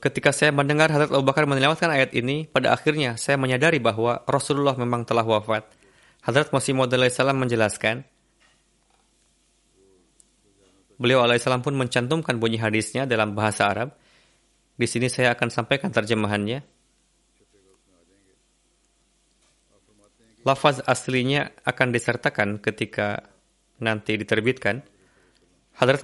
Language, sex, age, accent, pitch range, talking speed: Indonesian, male, 20-39, native, 110-140 Hz, 105 wpm